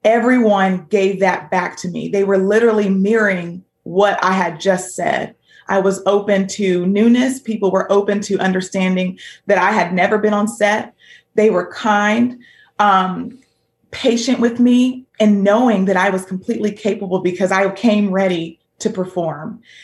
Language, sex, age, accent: English, female, 30-49, American